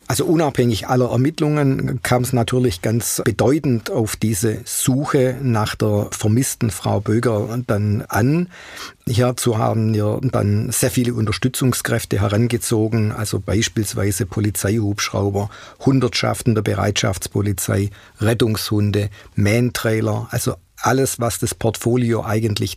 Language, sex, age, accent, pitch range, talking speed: German, male, 50-69, German, 100-120 Hz, 110 wpm